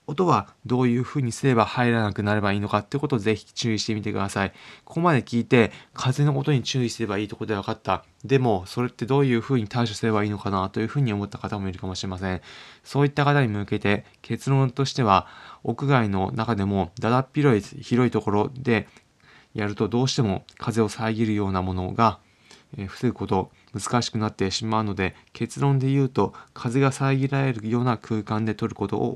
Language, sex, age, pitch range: Japanese, male, 20-39, 100-130 Hz